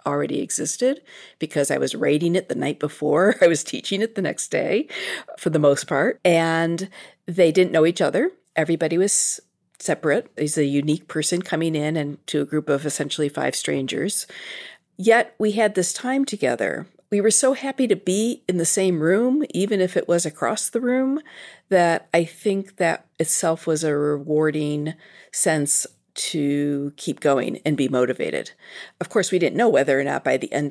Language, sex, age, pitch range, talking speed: English, female, 50-69, 150-205 Hz, 180 wpm